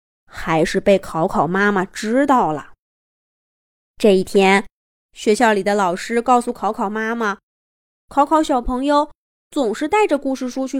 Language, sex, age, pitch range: Chinese, female, 20-39, 205-285 Hz